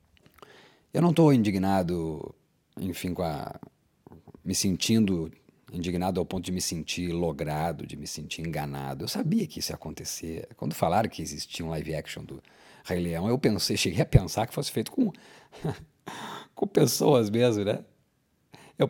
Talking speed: 160 wpm